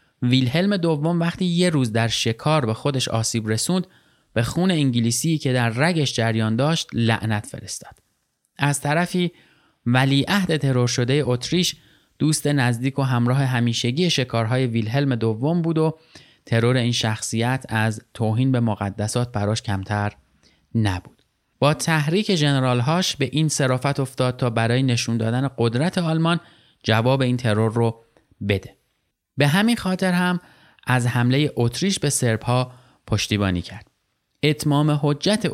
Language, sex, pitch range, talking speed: Persian, male, 115-150 Hz, 135 wpm